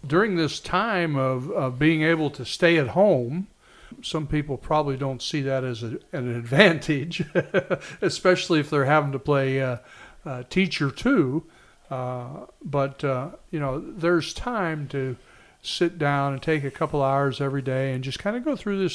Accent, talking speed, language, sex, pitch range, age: American, 170 wpm, English, male, 135-175 Hz, 60-79